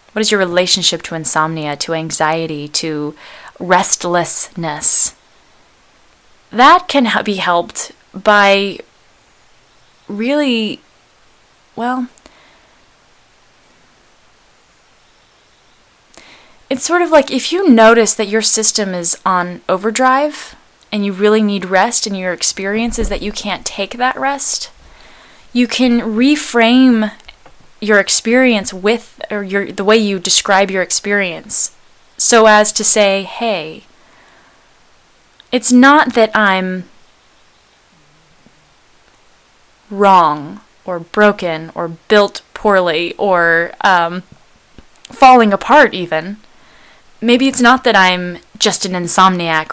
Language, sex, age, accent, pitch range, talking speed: English, female, 20-39, American, 180-235 Hz, 105 wpm